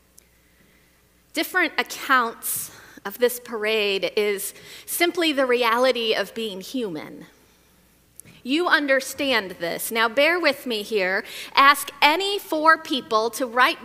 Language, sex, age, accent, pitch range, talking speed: English, female, 40-59, American, 225-290 Hz, 115 wpm